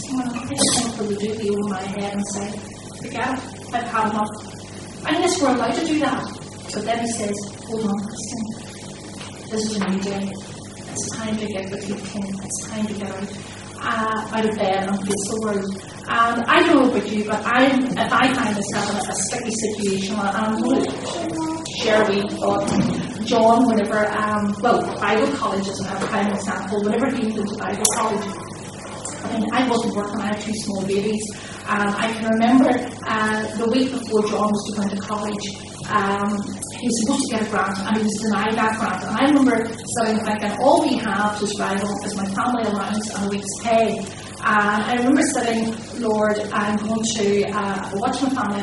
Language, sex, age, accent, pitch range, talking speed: English, female, 30-49, British, 200-230 Hz, 200 wpm